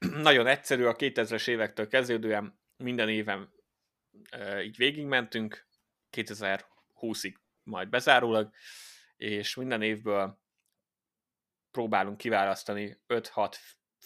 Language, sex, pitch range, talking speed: Hungarian, male, 105-125 Hz, 85 wpm